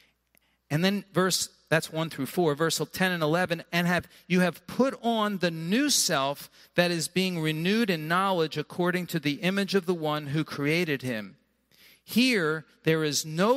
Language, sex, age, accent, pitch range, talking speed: English, male, 50-69, American, 175-250 Hz, 175 wpm